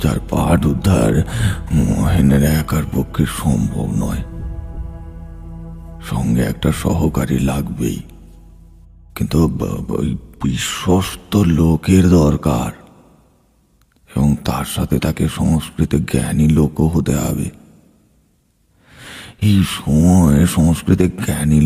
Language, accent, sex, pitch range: Bengali, native, male, 75-90 Hz